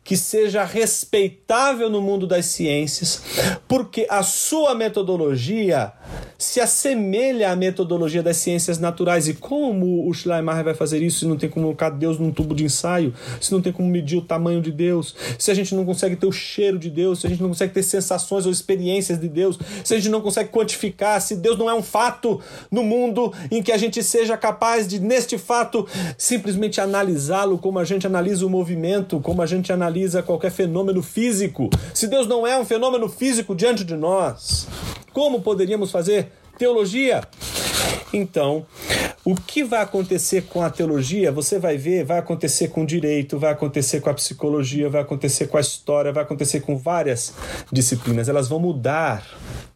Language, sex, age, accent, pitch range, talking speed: Portuguese, male, 40-59, Brazilian, 160-210 Hz, 180 wpm